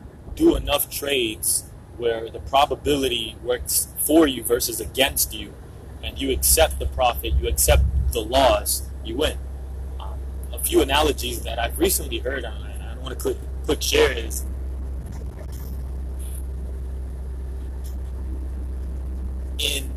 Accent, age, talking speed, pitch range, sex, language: American, 30-49, 125 wpm, 65-70 Hz, male, English